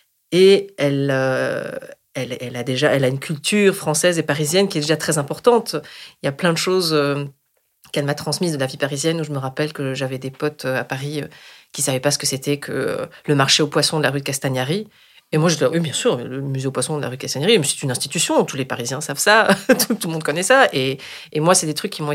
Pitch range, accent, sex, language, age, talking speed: 135-170 Hz, French, female, French, 30-49, 265 wpm